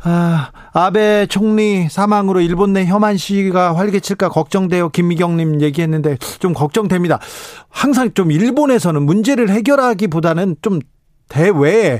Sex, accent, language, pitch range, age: male, native, Korean, 140-190 Hz, 40-59